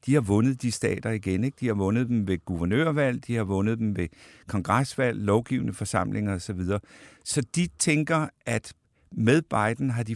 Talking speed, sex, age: 185 wpm, male, 60-79